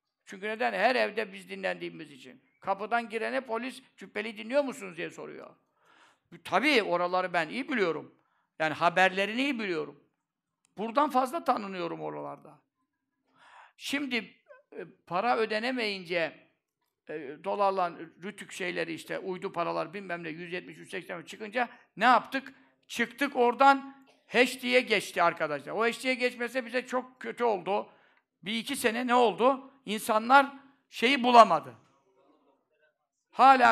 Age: 60-79